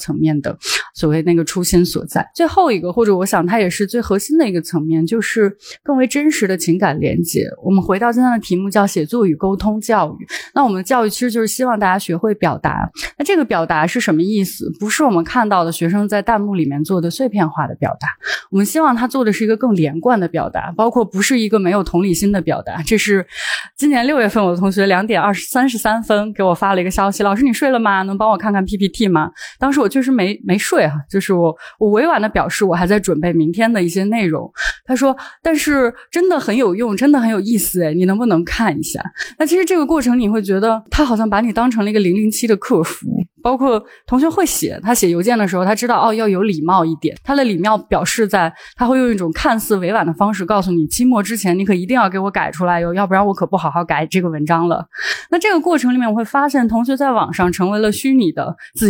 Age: 20-39